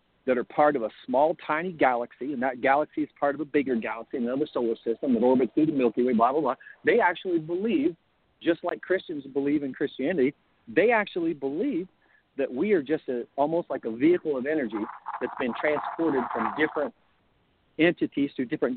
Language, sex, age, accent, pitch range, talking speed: English, male, 50-69, American, 130-185 Hz, 190 wpm